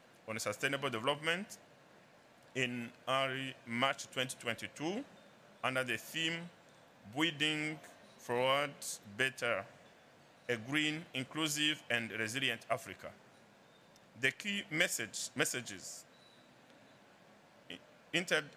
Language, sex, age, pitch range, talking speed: English, male, 50-69, 115-145 Hz, 80 wpm